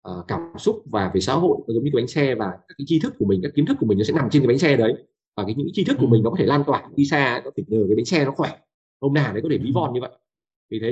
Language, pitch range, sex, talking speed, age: Vietnamese, 115-165 Hz, male, 355 wpm, 20-39